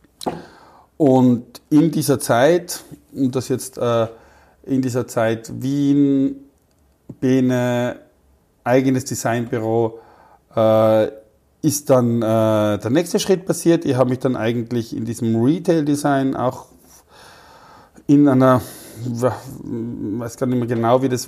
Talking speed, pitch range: 120 wpm, 110-130 Hz